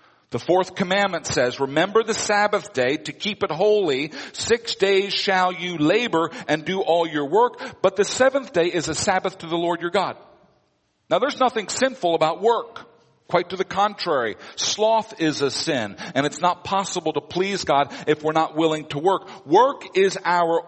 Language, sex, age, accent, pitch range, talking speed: English, male, 50-69, American, 160-210 Hz, 185 wpm